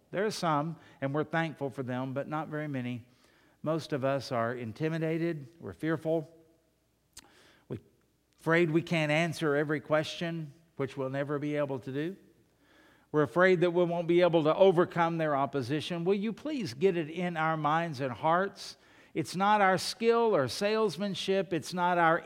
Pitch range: 140-180 Hz